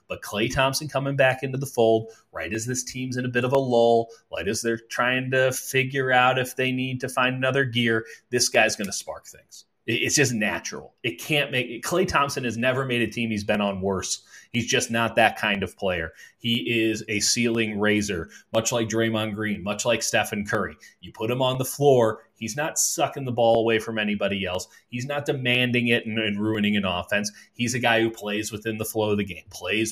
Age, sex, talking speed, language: 30-49, male, 225 wpm, English